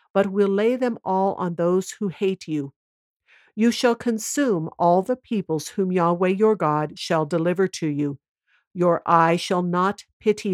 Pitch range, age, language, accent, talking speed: 165-215 Hz, 60-79, English, American, 165 wpm